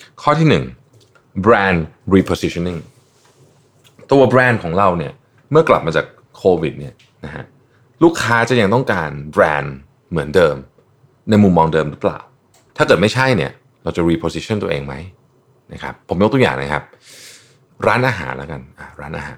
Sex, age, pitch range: male, 30-49, 80-130 Hz